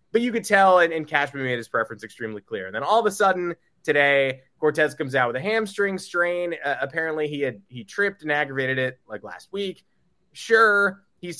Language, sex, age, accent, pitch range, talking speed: English, male, 20-39, American, 125-170 Hz, 210 wpm